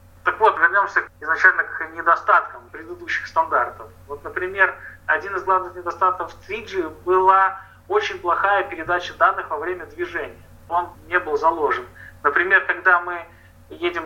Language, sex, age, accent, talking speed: Russian, male, 30-49, native, 130 wpm